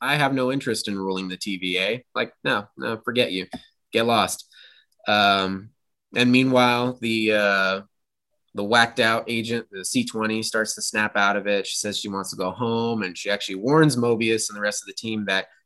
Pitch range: 100-125 Hz